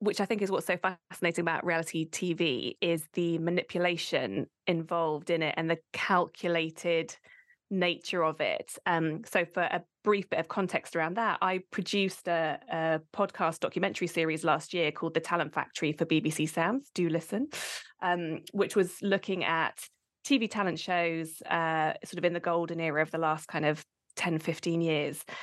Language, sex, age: English, female, 20-39